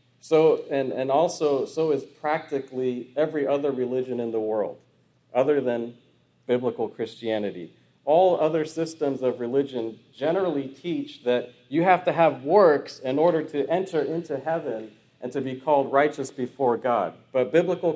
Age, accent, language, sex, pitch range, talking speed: 40-59, American, English, male, 130-160 Hz, 150 wpm